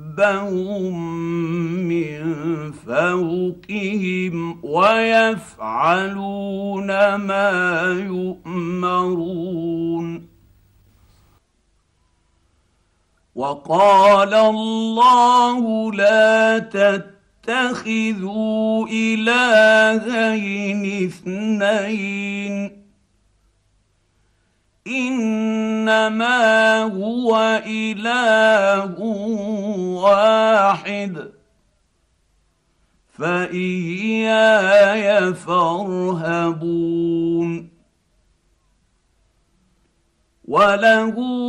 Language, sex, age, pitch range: Arabic, male, 50-69, 170-220 Hz